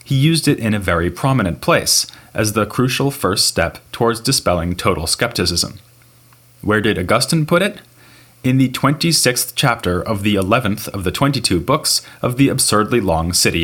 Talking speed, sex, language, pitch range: 165 wpm, male, English, 95-125 Hz